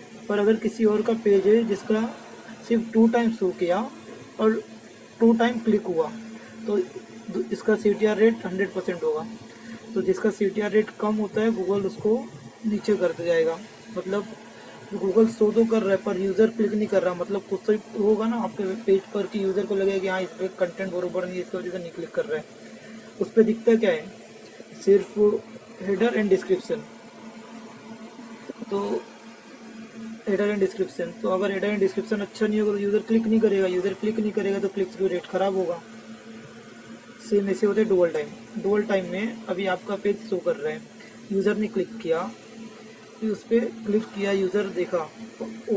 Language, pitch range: Hindi, 195-225 Hz